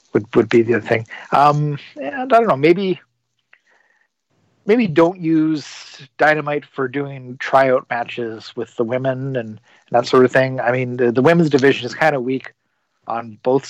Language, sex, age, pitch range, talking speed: English, male, 40-59, 120-145 Hz, 175 wpm